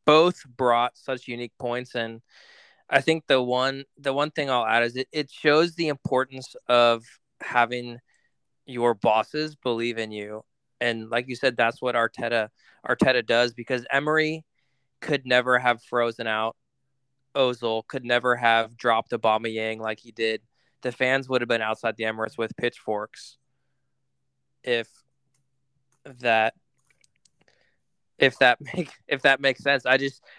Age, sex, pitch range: 20-39, male, 115-135 Hz